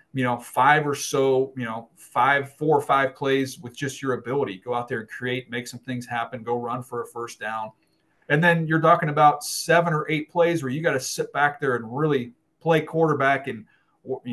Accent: American